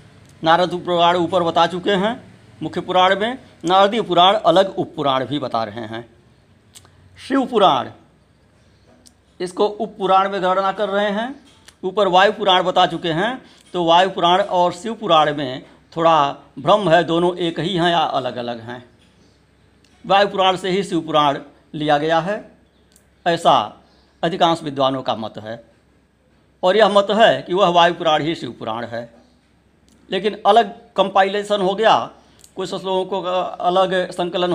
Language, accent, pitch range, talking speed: Hindi, native, 145-195 Hz, 150 wpm